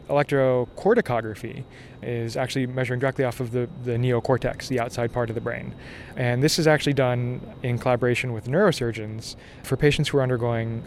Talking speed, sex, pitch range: 165 wpm, male, 120-135 Hz